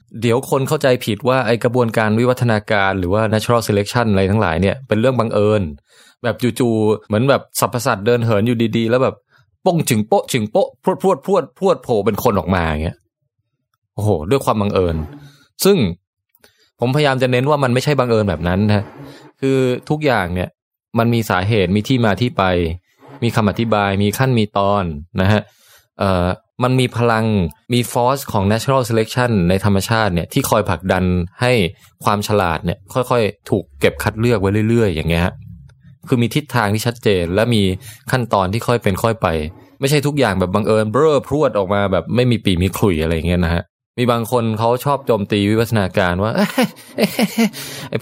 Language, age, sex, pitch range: Thai, 20-39, male, 100-125 Hz